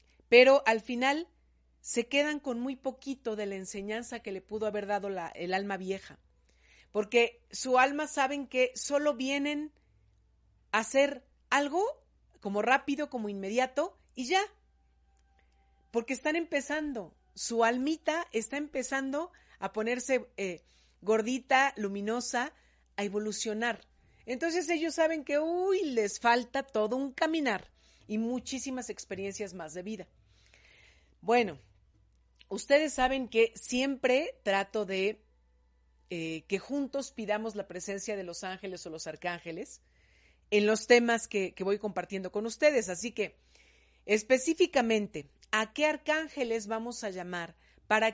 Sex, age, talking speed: female, 40-59, 130 wpm